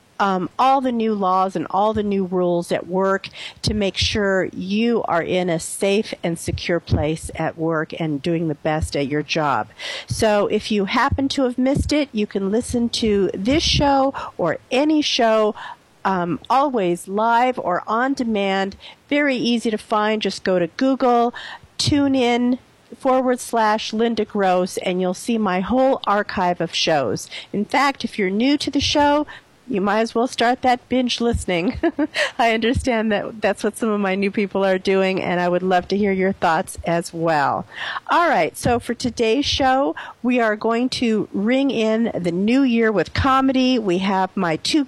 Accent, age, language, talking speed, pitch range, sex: American, 50-69, English, 180 wpm, 190-255 Hz, female